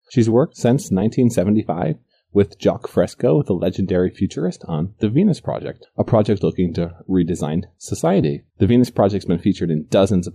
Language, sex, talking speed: English, male, 160 wpm